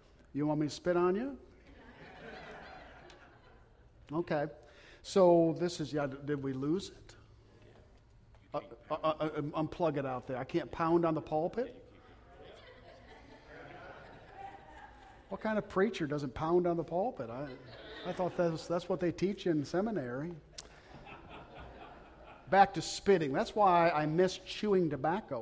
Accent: American